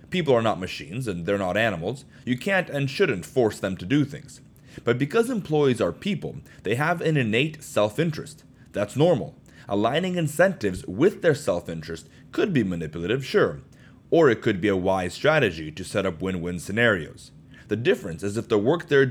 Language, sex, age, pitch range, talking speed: English, male, 30-49, 100-150 Hz, 180 wpm